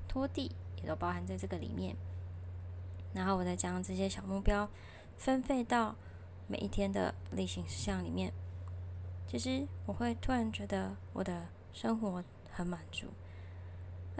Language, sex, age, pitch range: Chinese, female, 20-39, 90-110 Hz